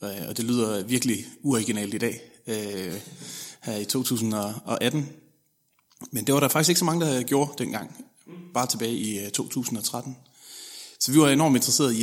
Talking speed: 160 wpm